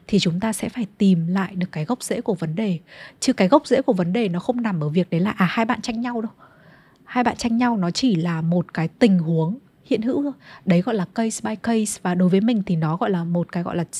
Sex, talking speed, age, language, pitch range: female, 285 wpm, 20-39, Vietnamese, 175-230 Hz